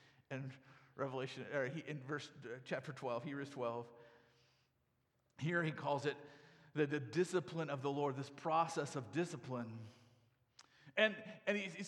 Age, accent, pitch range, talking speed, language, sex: 40-59, American, 150-215 Hz, 125 wpm, English, male